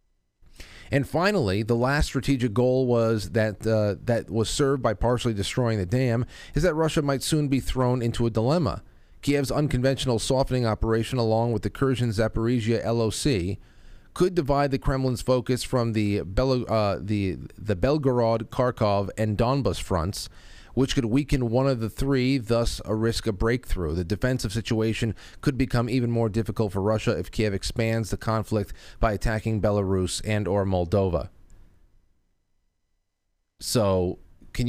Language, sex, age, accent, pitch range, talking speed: English, male, 30-49, American, 105-130 Hz, 150 wpm